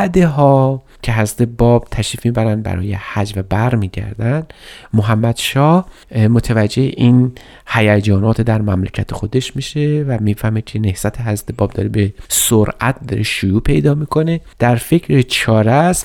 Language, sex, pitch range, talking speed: Persian, male, 100-130 Hz, 140 wpm